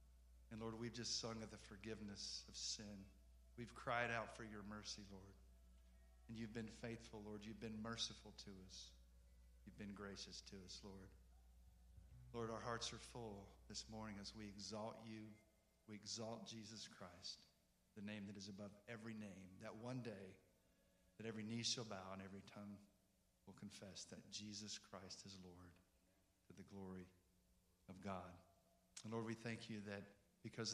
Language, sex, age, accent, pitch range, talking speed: English, male, 50-69, American, 95-110 Hz, 165 wpm